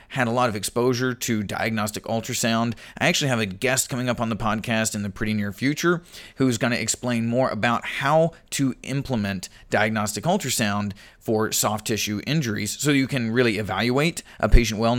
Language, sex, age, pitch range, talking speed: English, male, 30-49, 105-130 Hz, 180 wpm